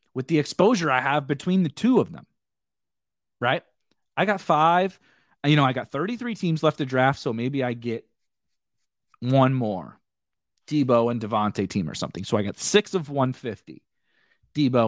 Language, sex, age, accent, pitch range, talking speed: English, male, 30-49, American, 125-170 Hz, 170 wpm